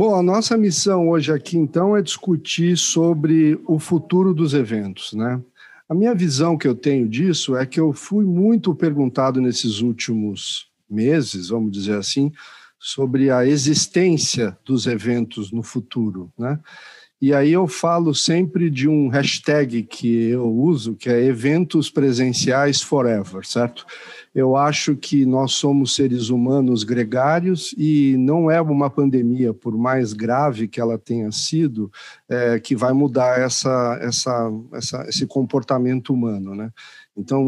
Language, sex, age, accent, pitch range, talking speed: Portuguese, male, 50-69, Brazilian, 120-150 Hz, 140 wpm